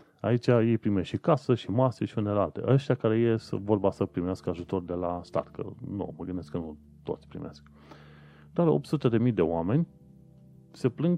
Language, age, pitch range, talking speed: Romanian, 30-49, 80-120 Hz, 185 wpm